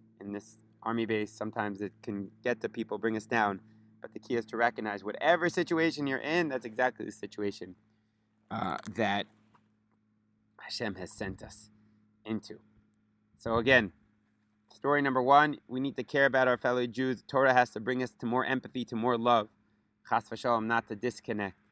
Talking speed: 170 wpm